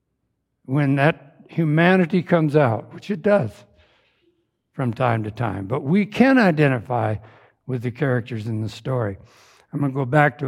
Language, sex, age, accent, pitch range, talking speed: English, male, 60-79, American, 120-160 Hz, 160 wpm